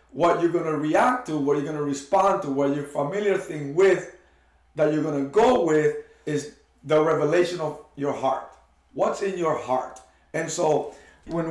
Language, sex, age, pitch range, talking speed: English, male, 50-69, 140-180 Hz, 190 wpm